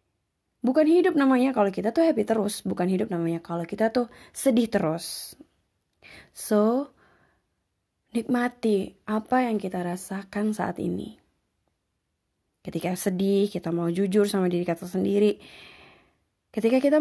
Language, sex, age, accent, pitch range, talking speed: English, female, 20-39, Indonesian, 175-230 Hz, 125 wpm